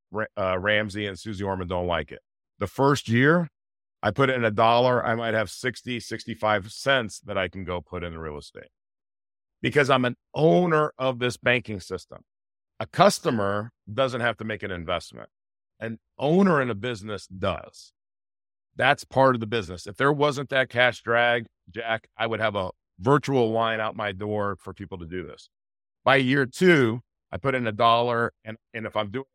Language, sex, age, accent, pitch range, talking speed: English, male, 40-59, American, 100-130 Hz, 190 wpm